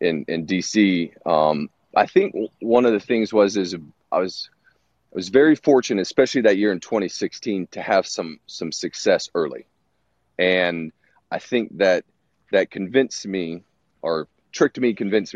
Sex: male